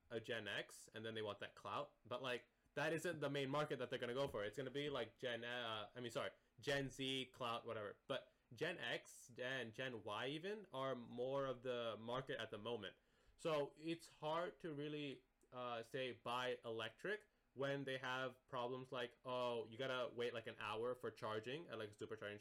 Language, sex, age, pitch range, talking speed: English, male, 20-39, 115-140 Hz, 200 wpm